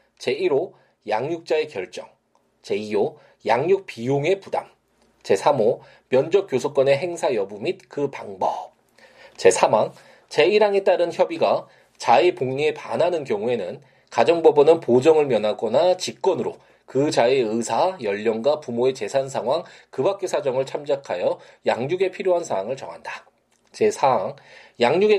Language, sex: Korean, male